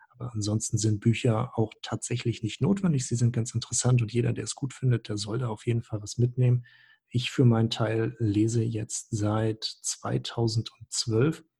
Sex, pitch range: male, 110-130 Hz